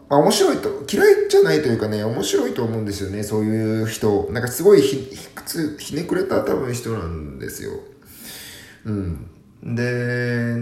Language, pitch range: Japanese, 95-115 Hz